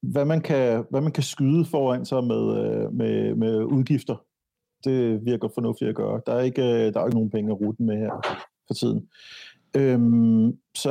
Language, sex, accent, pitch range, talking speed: Danish, male, native, 110-135 Hz, 200 wpm